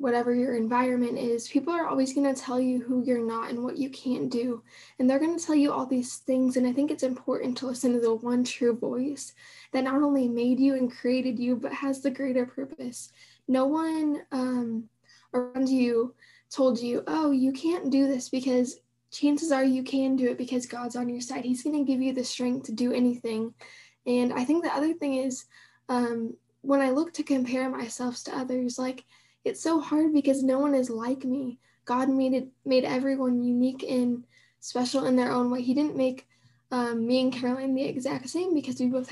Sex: female